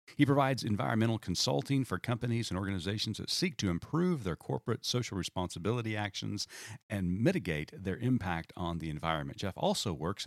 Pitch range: 90-140 Hz